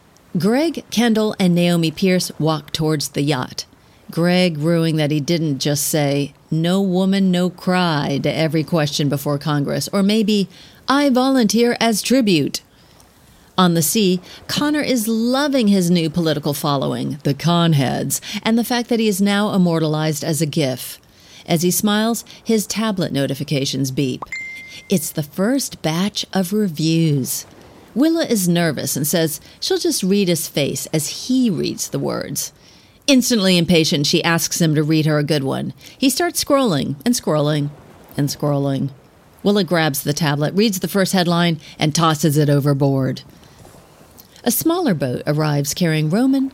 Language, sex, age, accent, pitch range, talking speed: English, female, 40-59, American, 150-210 Hz, 150 wpm